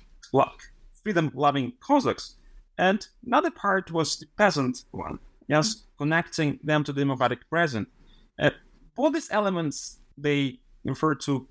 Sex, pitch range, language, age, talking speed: male, 130-160 Hz, English, 30-49, 125 wpm